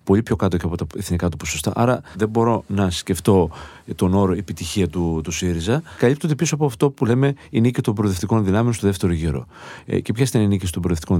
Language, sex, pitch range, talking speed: Greek, male, 90-140 Hz, 225 wpm